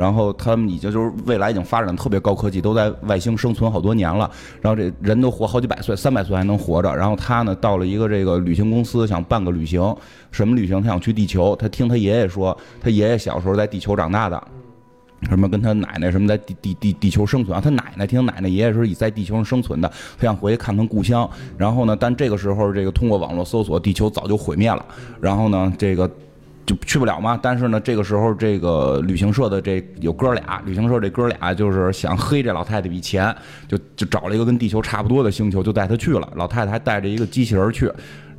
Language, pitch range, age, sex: Chinese, 95-115 Hz, 20-39, male